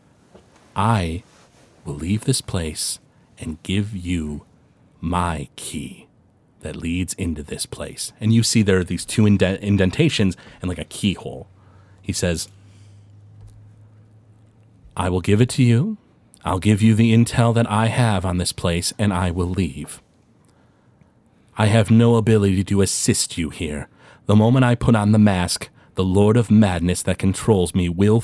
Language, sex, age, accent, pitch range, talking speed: English, male, 30-49, American, 90-110 Hz, 155 wpm